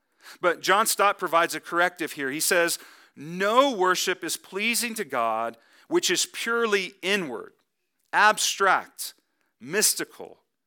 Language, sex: English, male